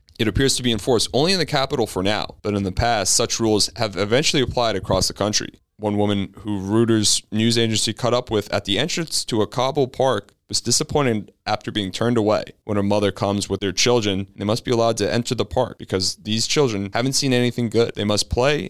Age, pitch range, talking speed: 20-39, 100-120 Hz, 225 wpm